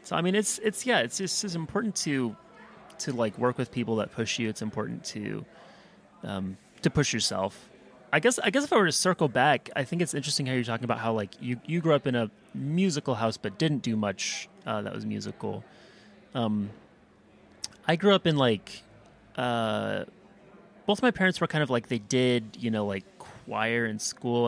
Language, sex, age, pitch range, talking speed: English, male, 30-49, 105-155 Hz, 210 wpm